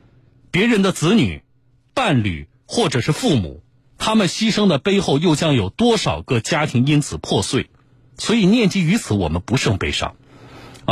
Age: 50-69